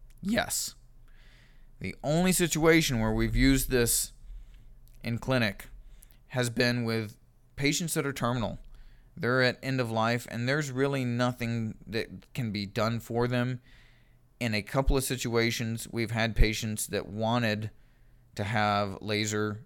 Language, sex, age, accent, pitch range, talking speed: English, male, 20-39, American, 115-130 Hz, 135 wpm